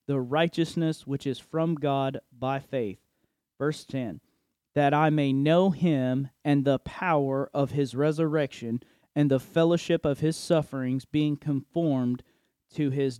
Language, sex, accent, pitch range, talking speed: English, male, American, 140-165 Hz, 140 wpm